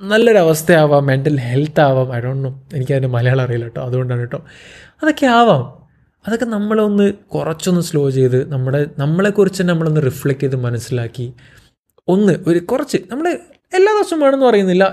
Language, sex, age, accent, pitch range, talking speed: Malayalam, male, 20-39, native, 125-160 Hz, 130 wpm